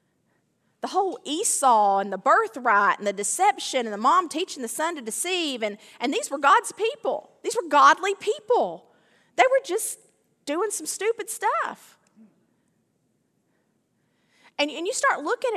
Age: 40-59